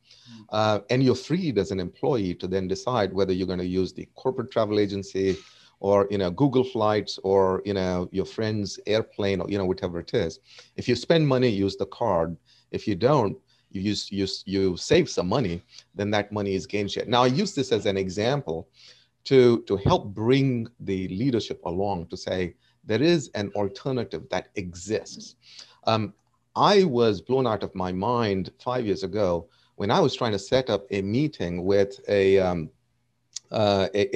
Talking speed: 185 wpm